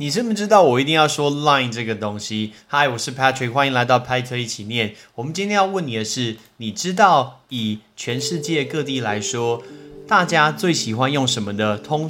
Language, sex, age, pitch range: Chinese, male, 30-49, 115-160 Hz